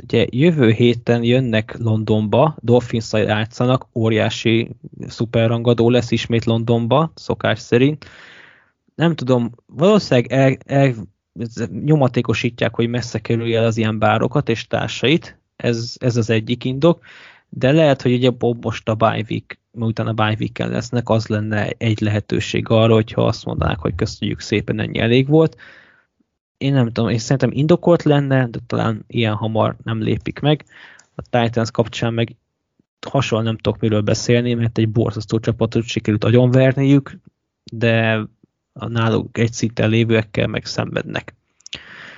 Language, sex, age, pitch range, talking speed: Hungarian, male, 20-39, 115-130 Hz, 135 wpm